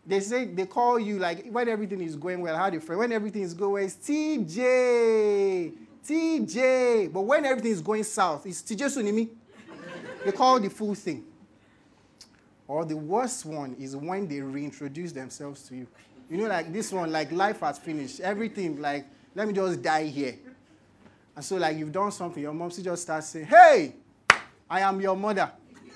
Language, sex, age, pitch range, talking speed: English, male, 30-49, 160-240 Hz, 185 wpm